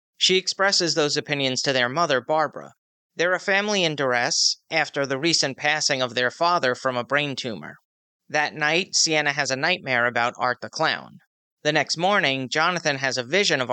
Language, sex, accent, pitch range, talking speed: English, male, American, 130-175 Hz, 185 wpm